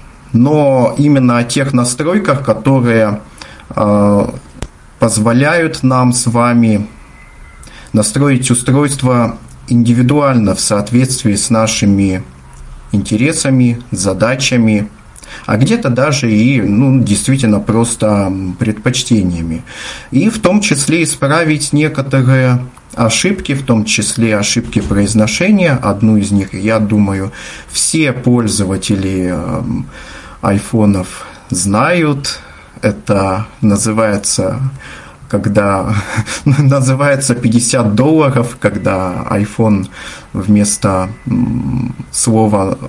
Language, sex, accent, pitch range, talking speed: Russian, male, native, 105-125 Hz, 85 wpm